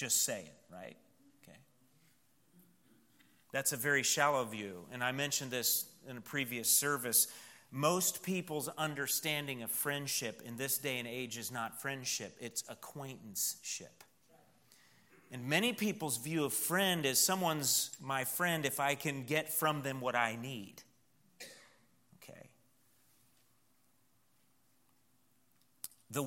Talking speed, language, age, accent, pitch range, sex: 120 wpm, English, 40-59, American, 125-155 Hz, male